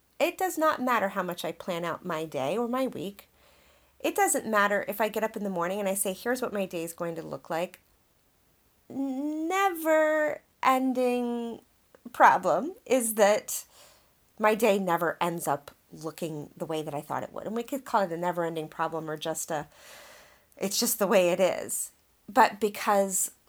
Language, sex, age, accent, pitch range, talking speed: English, female, 30-49, American, 175-245 Hz, 190 wpm